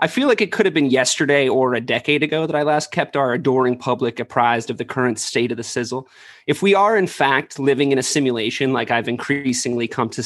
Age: 30-49